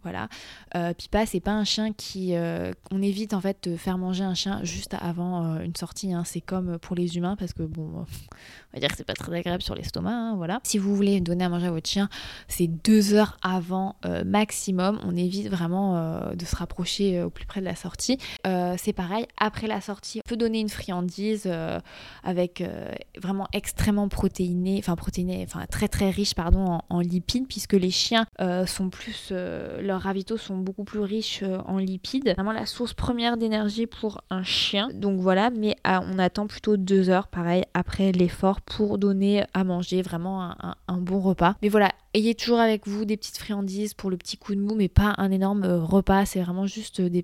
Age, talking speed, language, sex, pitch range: 20-39, 215 wpm, French, female, 180-210 Hz